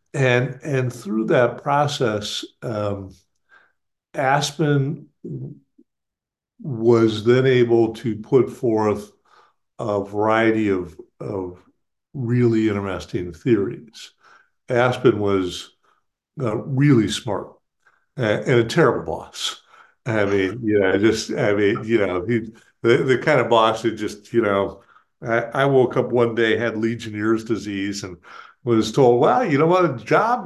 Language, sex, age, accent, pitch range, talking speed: English, male, 60-79, American, 105-130 Hz, 135 wpm